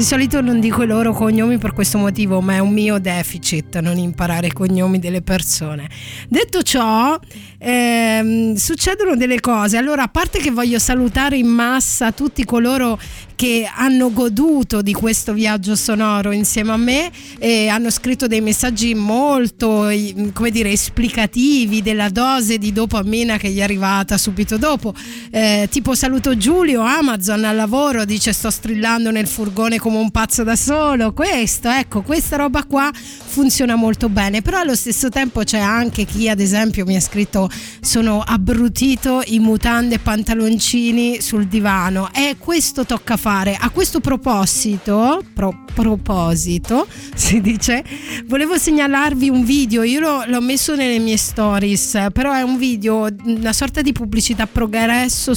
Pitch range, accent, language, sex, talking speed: 210-260 Hz, native, Italian, female, 155 wpm